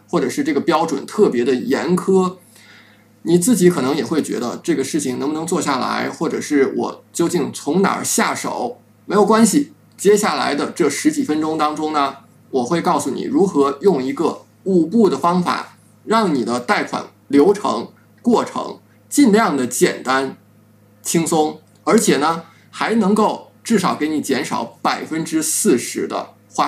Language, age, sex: Chinese, 20-39, male